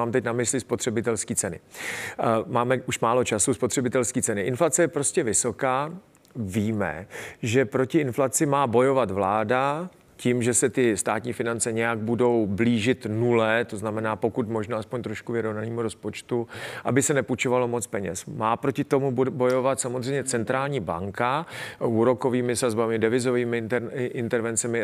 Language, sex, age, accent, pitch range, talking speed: Czech, male, 40-59, native, 115-135 Hz, 140 wpm